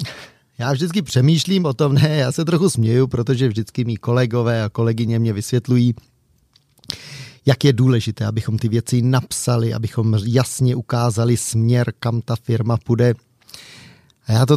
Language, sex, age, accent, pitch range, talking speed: Czech, male, 30-49, native, 115-135 Hz, 145 wpm